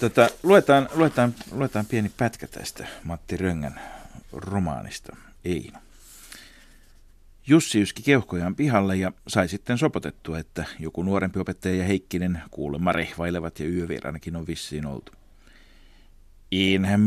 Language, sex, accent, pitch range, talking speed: Finnish, male, native, 80-100 Hz, 120 wpm